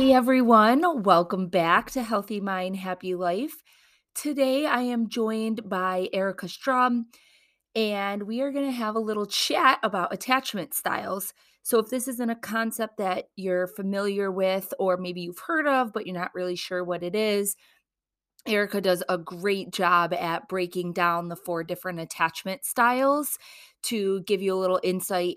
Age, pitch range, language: 30-49, 185-235 Hz, English